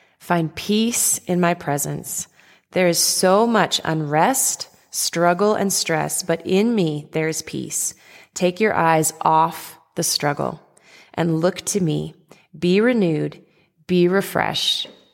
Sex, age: female, 20-39